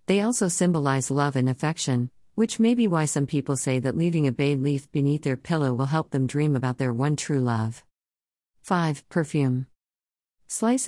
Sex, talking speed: female, 180 wpm